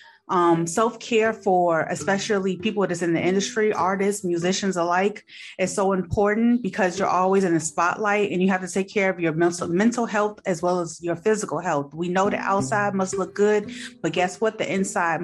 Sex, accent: female, American